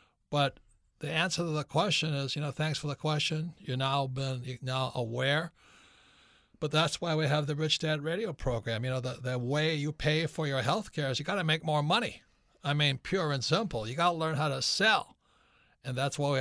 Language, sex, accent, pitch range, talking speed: English, male, American, 135-170 Hz, 230 wpm